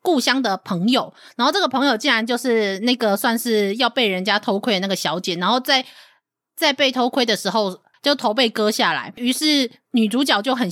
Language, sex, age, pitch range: Chinese, female, 20-39, 205-270 Hz